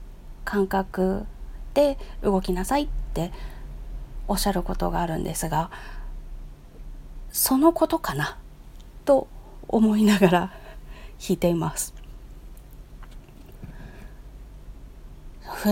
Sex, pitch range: female, 185-275 Hz